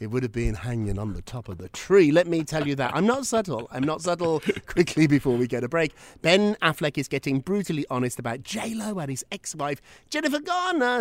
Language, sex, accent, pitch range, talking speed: English, male, British, 130-190 Hz, 225 wpm